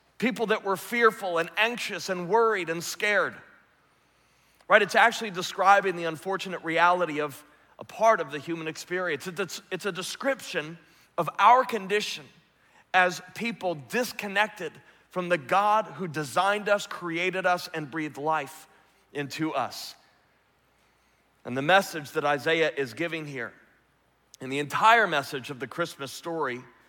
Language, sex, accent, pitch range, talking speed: English, male, American, 155-195 Hz, 140 wpm